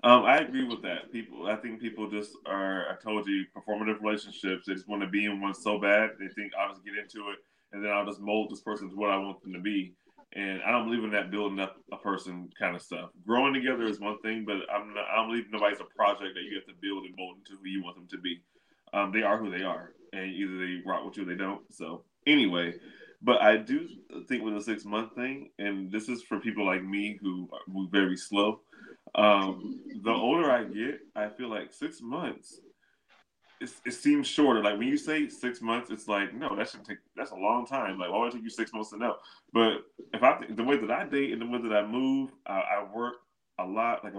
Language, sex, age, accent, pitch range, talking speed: English, male, 20-39, American, 100-120 Hz, 250 wpm